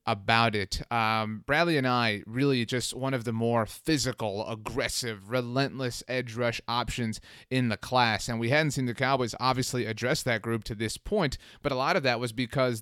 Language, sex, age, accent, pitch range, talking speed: English, male, 30-49, American, 115-135 Hz, 190 wpm